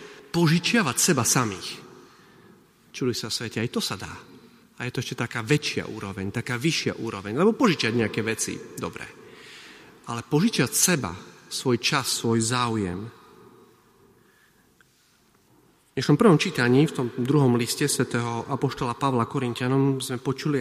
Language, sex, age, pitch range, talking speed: Slovak, male, 40-59, 120-170 Hz, 130 wpm